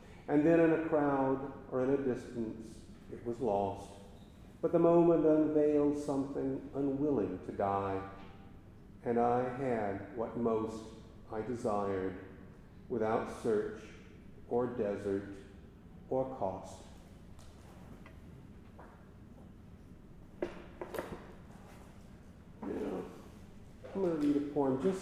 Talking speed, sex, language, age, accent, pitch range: 95 wpm, male, English, 50-69, American, 100-130 Hz